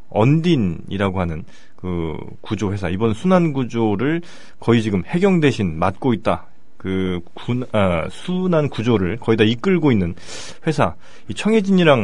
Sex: male